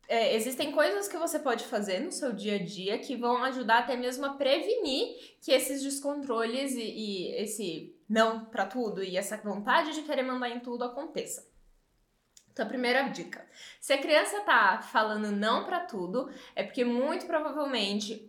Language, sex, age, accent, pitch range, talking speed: Portuguese, female, 10-29, Brazilian, 220-305 Hz, 175 wpm